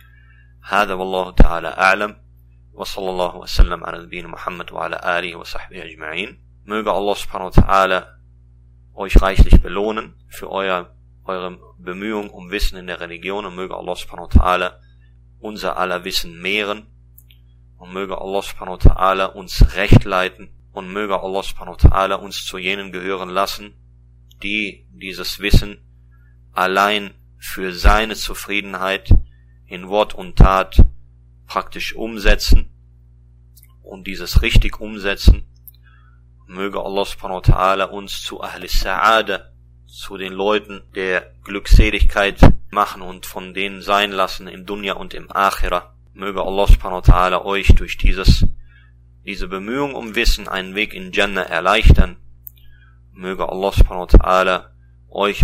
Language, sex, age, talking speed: German, male, 30-49, 120 wpm